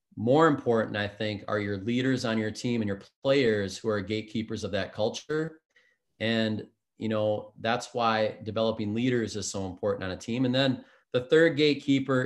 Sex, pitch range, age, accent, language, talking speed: male, 105-120 Hz, 30-49, American, English, 180 wpm